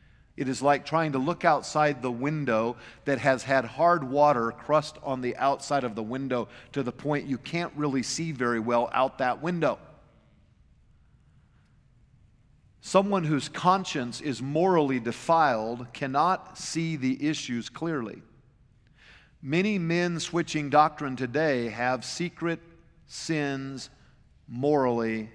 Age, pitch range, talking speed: 50-69, 125-165 Hz, 125 wpm